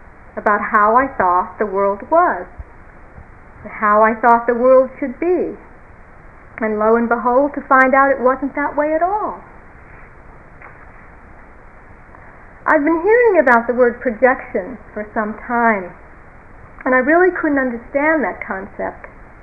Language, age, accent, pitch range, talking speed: English, 50-69, American, 215-275 Hz, 135 wpm